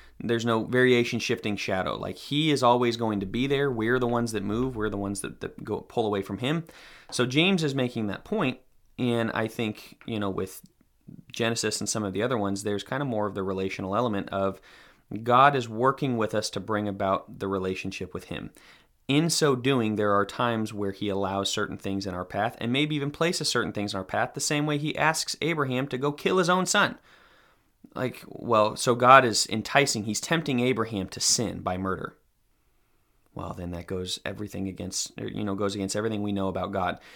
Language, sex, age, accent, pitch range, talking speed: English, male, 30-49, American, 100-130 Hz, 210 wpm